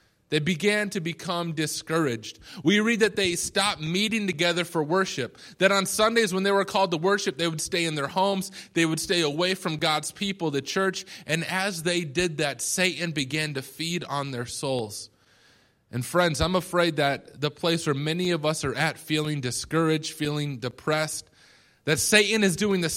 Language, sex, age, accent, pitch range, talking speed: English, male, 20-39, American, 150-205 Hz, 190 wpm